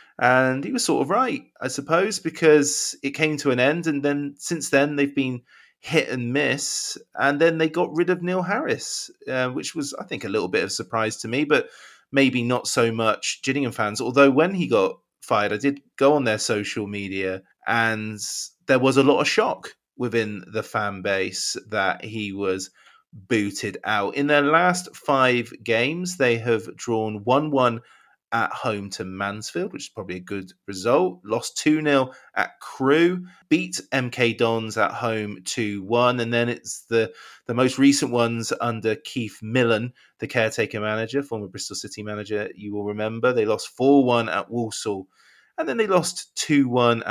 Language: English